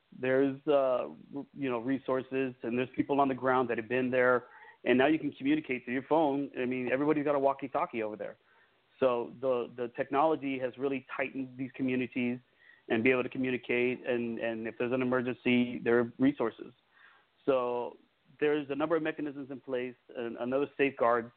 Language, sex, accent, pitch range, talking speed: English, male, American, 125-145 Hz, 185 wpm